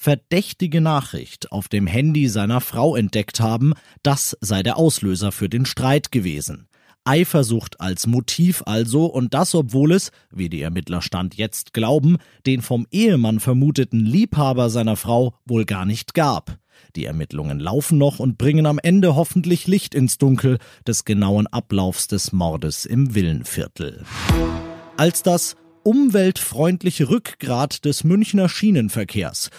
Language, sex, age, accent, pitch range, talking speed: German, male, 40-59, German, 110-165 Hz, 140 wpm